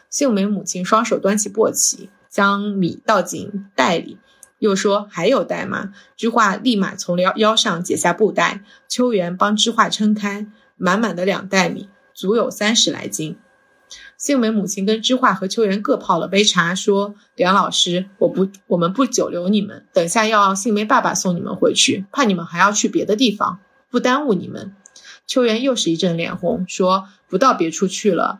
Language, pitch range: Chinese, 190-250 Hz